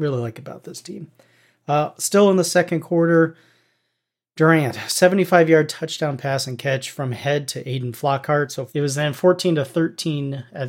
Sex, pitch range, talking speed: male, 125-150 Hz, 175 wpm